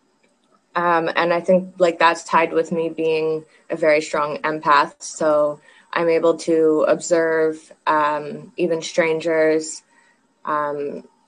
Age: 20-39